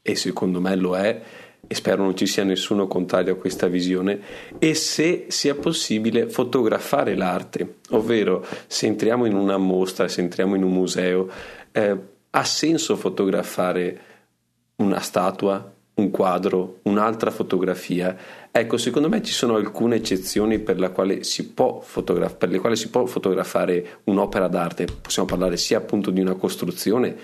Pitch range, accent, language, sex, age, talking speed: 90-110 Hz, native, Italian, male, 30-49, 140 wpm